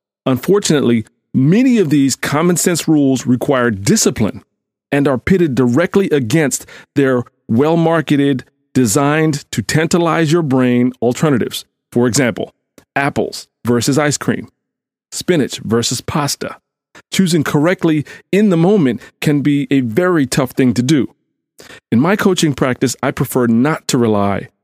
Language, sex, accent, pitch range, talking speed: English, male, American, 125-165 Hz, 130 wpm